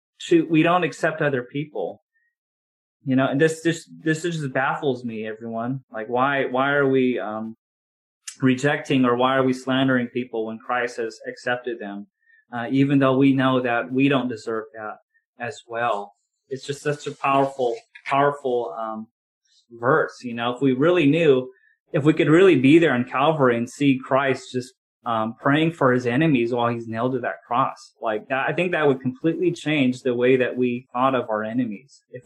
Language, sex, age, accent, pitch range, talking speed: English, male, 30-49, American, 125-160 Hz, 185 wpm